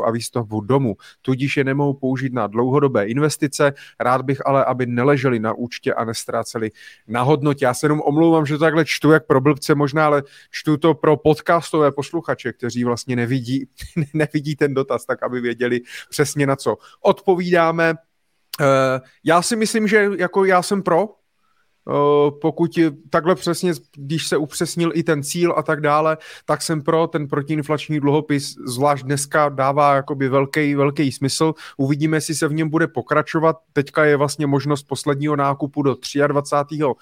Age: 30-49